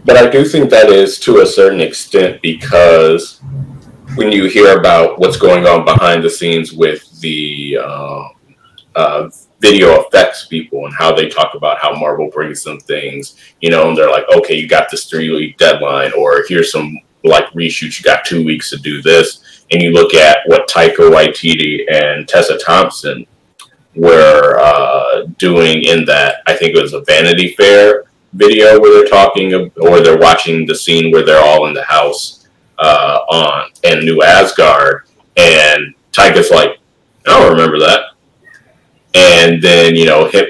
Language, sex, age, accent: English, male, 30-49, American